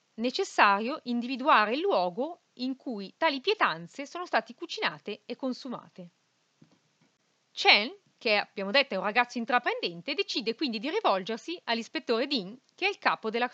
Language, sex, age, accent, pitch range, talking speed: Italian, female, 30-49, native, 210-295 Hz, 140 wpm